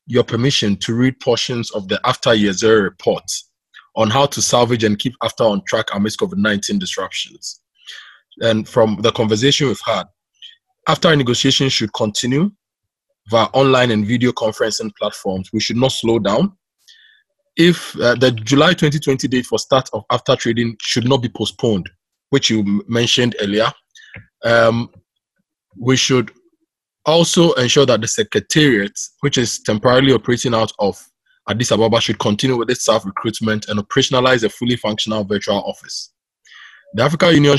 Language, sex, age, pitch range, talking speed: English, male, 20-39, 110-140 Hz, 150 wpm